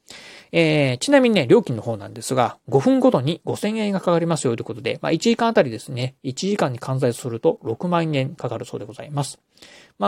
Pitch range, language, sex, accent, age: 130-165 Hz, Japanese, male, native, 30-49